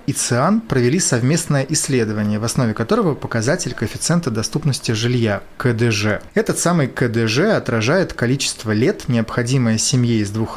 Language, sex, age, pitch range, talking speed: Russian, male, 30-49, 115-145 Hz, 135 wpm